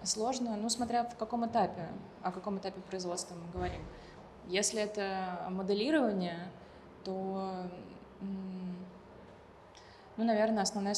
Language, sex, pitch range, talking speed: Russian, female, 180-200 Hz, 105 wpm